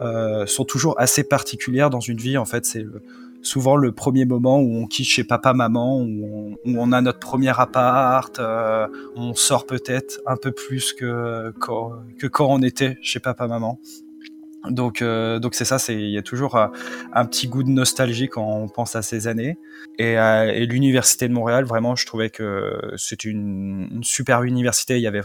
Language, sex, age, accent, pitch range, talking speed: French, male, 20-39, French, 110-125 Hz, 190 wpm